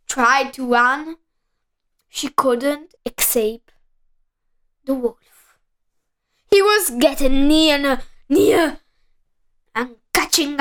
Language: Italian